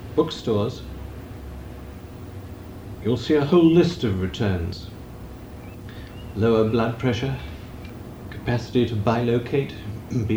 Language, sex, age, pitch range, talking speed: English, male, 50-69, 95-120 Hz, 85 wpm